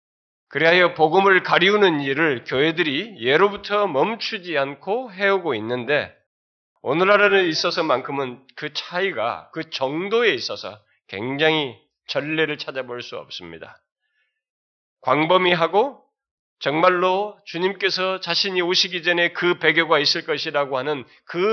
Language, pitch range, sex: Korean, 140-185 Hz, male